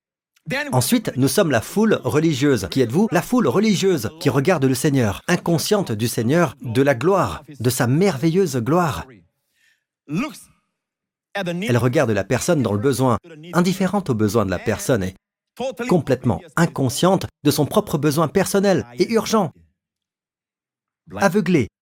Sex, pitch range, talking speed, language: male, 110-165 Hz, 135 wpm, French